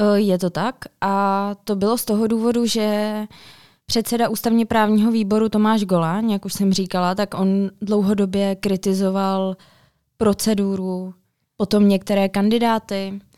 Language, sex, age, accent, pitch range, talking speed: Czech, female, 20-39, native, 185-210 Hz, 125 wpm